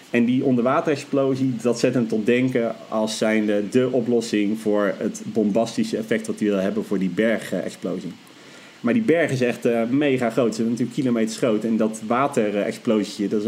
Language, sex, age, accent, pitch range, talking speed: Dutch, male, 40-59, Dutch, 110-135 Hz, 185 wpm